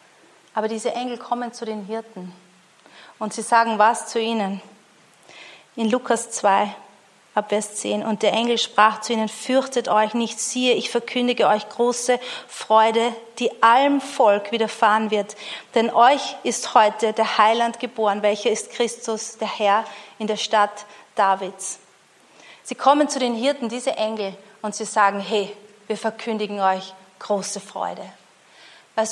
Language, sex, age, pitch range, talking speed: German, female, 30-49, 205-230 Hz, 145 wpm